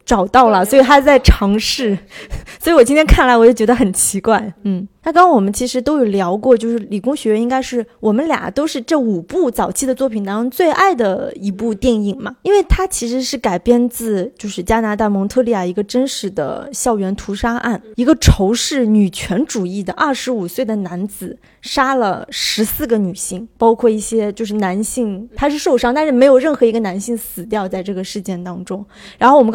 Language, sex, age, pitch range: Chinese, female, 20-39, 210-270 Hz